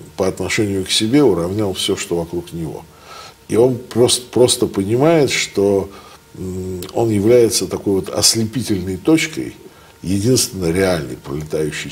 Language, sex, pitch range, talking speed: Russian, male, 95-115 Hz, 120 wpm